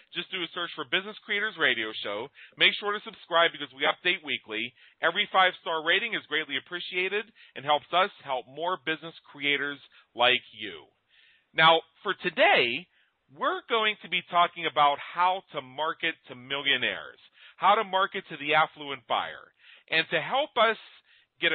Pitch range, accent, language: 150-185 Hz, American, English